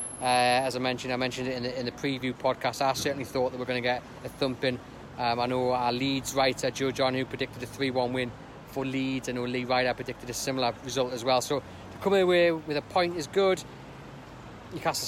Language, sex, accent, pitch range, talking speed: English, male, British, 125-145 Hz, 230 wpm